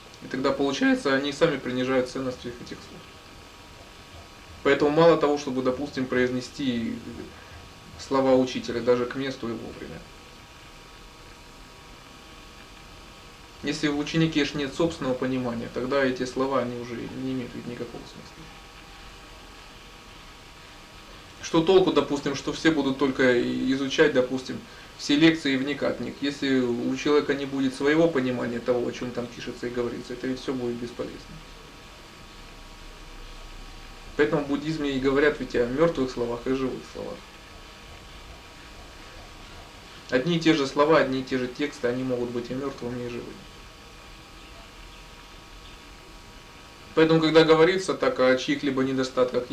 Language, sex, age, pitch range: Russian, male, 20-39, 125-145 Hz